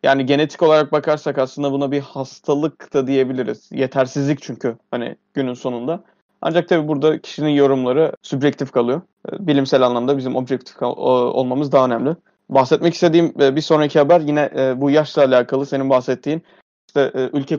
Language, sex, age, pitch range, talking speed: Turkish, male, 30-49, 130-155 Hz, 145 wpm